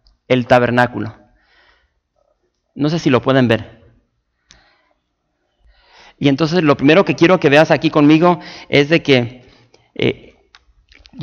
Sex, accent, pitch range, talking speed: male, Mexican, 130-170 Hz, 120 wpm